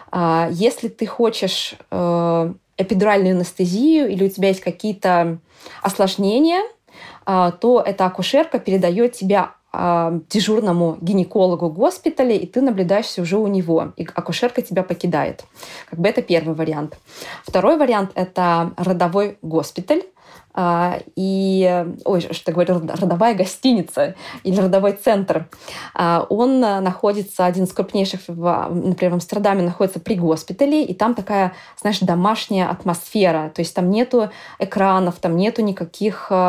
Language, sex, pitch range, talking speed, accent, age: Russian, female, 175-220 Hz, 120 wpm, native, 20-39